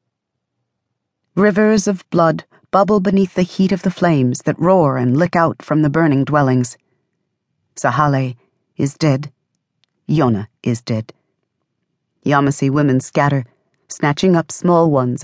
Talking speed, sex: 125 wpm, female